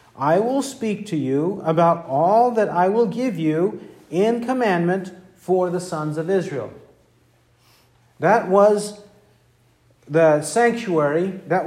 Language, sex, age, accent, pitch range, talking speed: English, male, 50-69, American, 150-205 Hz, 125 wpm